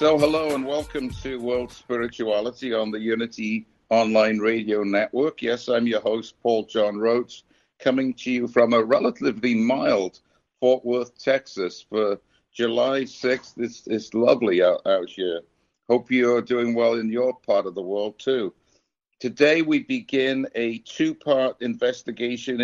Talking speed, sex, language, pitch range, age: 150 wpm, male, English, 115-135 Hz, 60-79